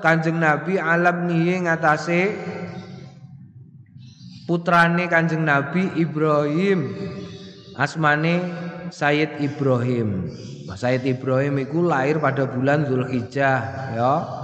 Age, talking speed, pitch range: 20-39, 85 wpm, 140-170 Hz